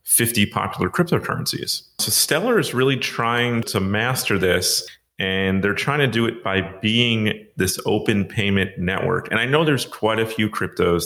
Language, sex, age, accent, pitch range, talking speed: English, male, 30-49, American, 90-110 Hz, 170 wpm